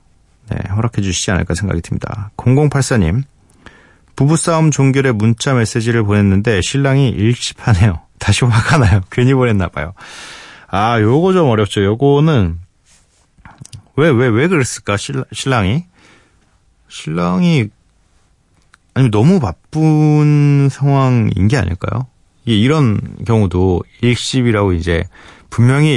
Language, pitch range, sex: Korean, 90-135 Hz, male